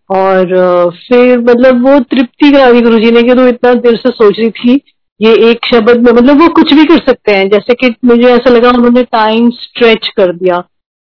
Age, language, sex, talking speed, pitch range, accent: 30-49, Hindi, female, 205 wpm, 215-265 Hz, native